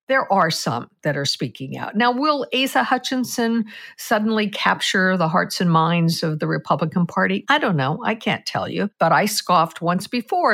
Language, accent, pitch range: English, American, 140-195 Hz